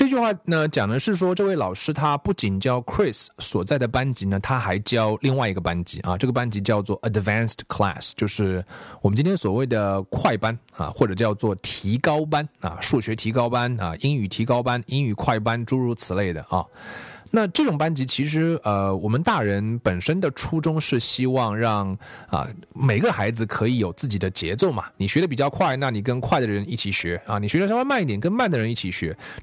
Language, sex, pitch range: Chinese, male, 100-145 Hz